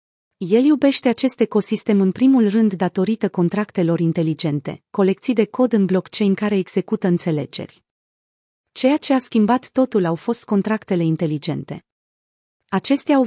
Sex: female